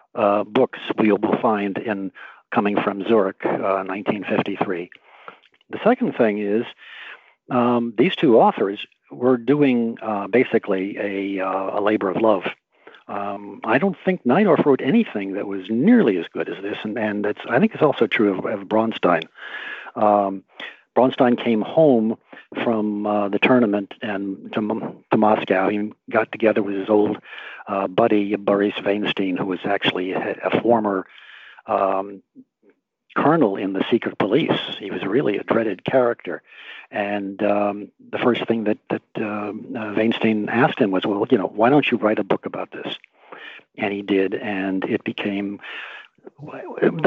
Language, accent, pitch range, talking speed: English, American, 100-125 Hz, 155 wpm